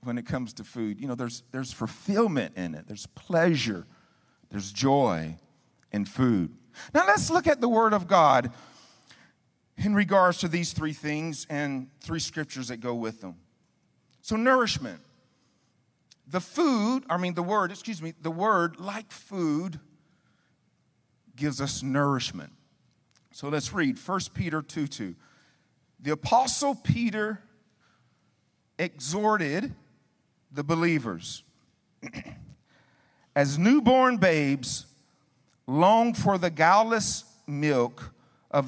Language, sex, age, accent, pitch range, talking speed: English, male, 50-69, American, 125-180 Hz, 120 wpm